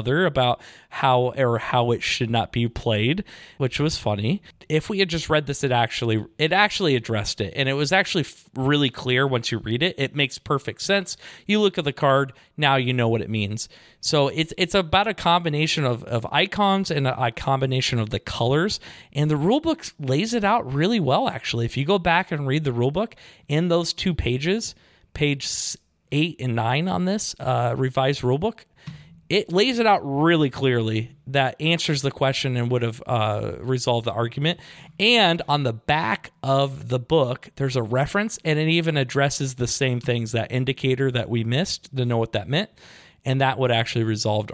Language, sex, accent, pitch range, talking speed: English, male, American, 125-165 Hz, 195 wpm